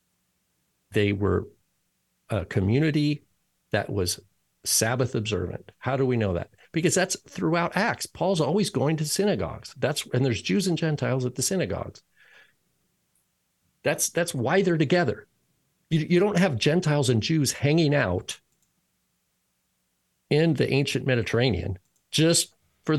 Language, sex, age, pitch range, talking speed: English, male, 50-69, 115-150 Hz, 135 wpm